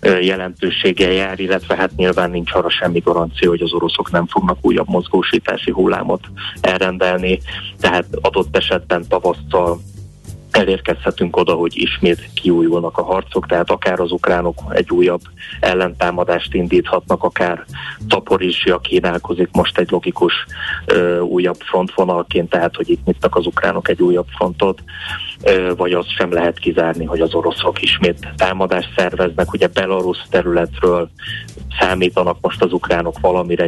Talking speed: 135 wpm